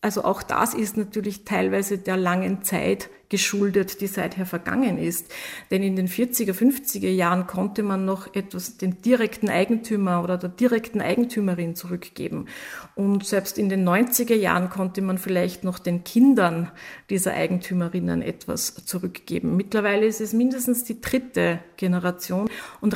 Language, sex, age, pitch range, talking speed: German, female, 50-69, 180-215 Hz, 145 wpm